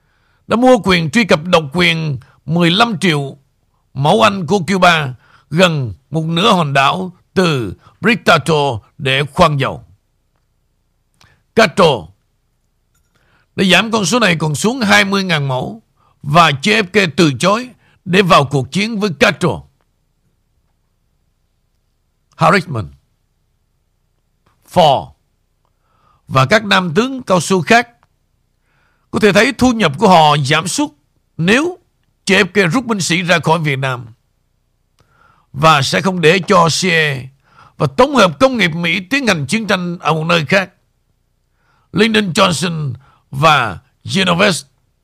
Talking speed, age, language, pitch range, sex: 125 wpm, 60-79, Vietnamese, 135-200 Hz, male